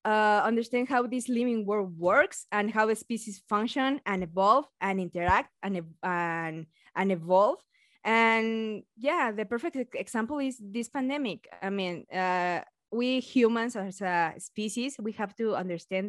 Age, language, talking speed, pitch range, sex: 20-39, English, 150 wpm, 185-240 Hz, female